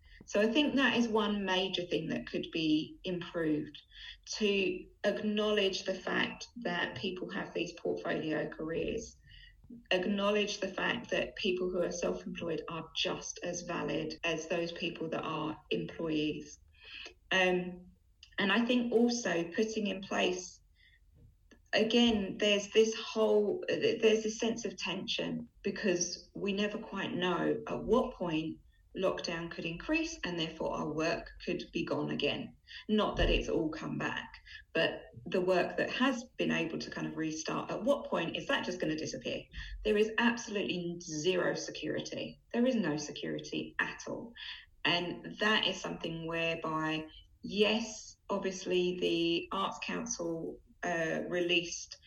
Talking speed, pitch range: 145 wpm, 165-215 Hz